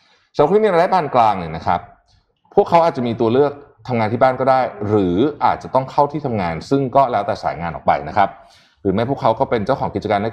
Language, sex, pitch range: Thai, male, 95-140 Hz